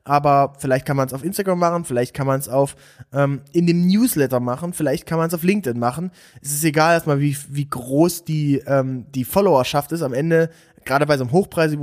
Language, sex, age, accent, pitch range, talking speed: German, male, 20-39, German, 140-165 Hz, 225 wpm